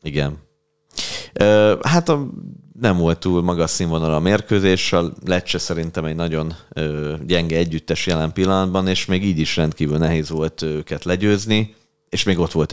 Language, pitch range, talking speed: Hungarian, 80-95 Hz, 145 wpm